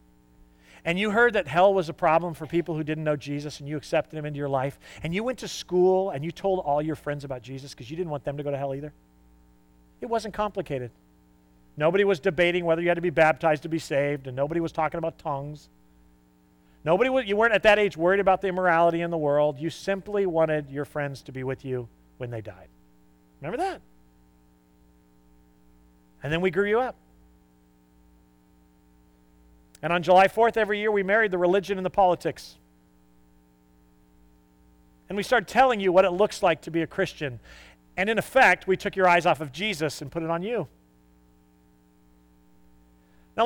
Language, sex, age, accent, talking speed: English, male, 40-59, American, 195 wpm